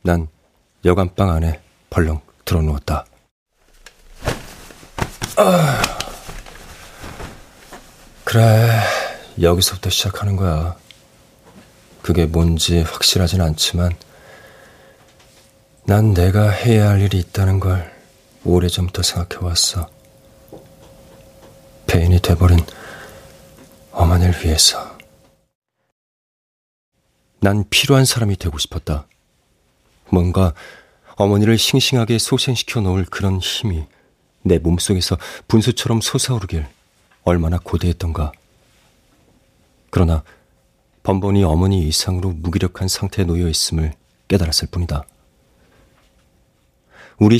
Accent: native